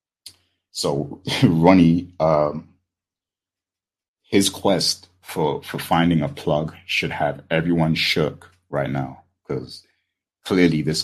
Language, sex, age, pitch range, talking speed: English, male, 30-49, 70-80 Hz, 105 wpm